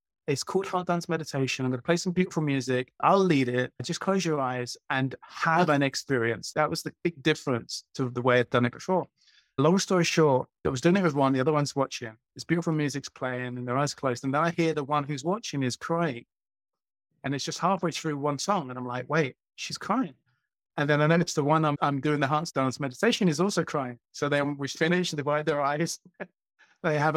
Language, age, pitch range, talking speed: English, 30-49, 135-170 Hz, 230 wpm